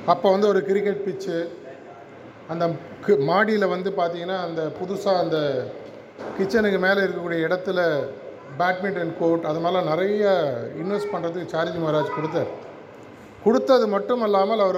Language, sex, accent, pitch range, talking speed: Tamil, male, native, 170-205 Hz, 120 wpm